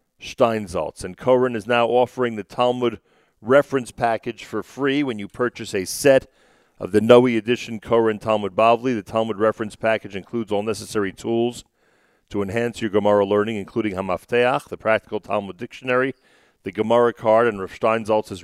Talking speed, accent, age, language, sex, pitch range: 155 wpm, American, 40-59, English, male, 100-120 Hz